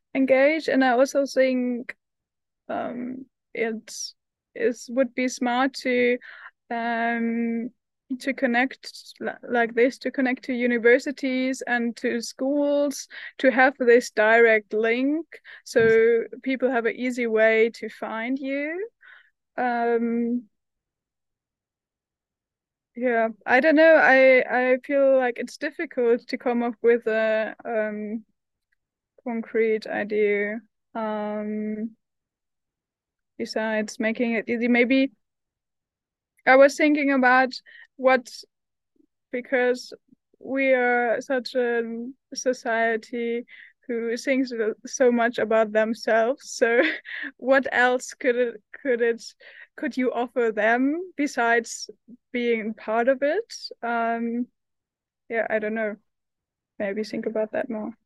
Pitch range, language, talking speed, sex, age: 230-265 Hz, English, 110 wpm, female, 20-39